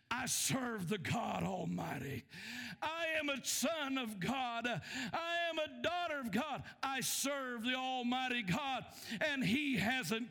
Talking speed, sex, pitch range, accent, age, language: 145 wpm, male, 185-270 Hz, American, 50-69, English